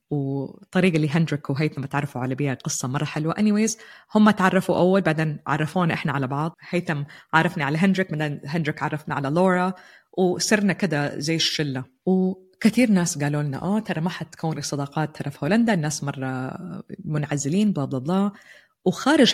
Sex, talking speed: female, 155 wpm